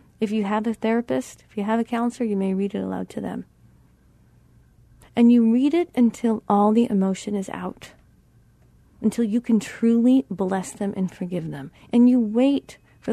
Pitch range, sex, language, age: 190-240 Hz, female, English, 40-59